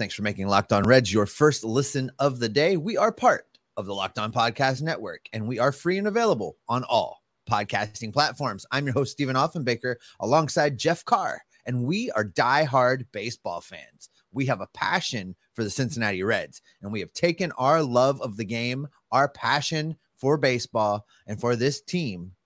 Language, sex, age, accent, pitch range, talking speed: English, male, 30-49, American, 115-165 Hz, 185 wpm